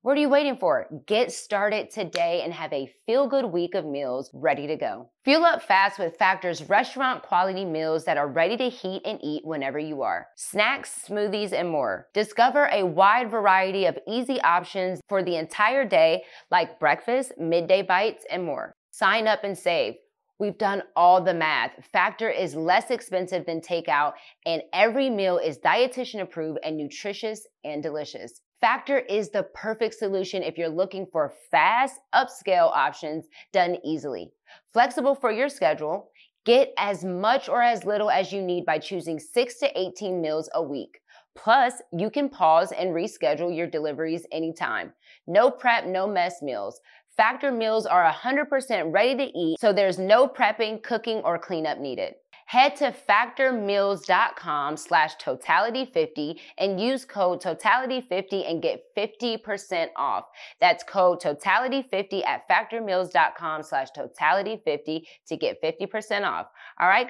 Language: English